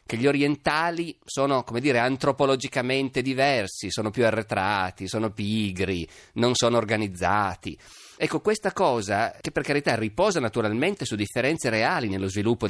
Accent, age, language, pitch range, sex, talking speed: native, 30-49, Italian, 95-140 Hz, male, 135 wpm